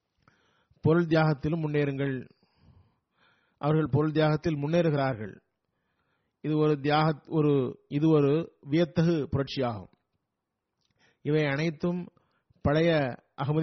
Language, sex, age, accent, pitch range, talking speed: Tamil, male, 30-49, native, 145-165 Hz, 55 wpm